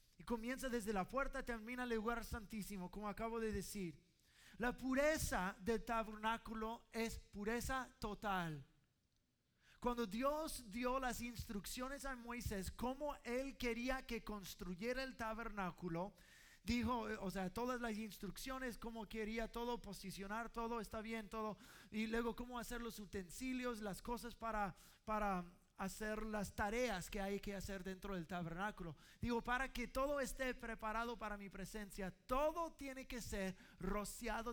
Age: 30-49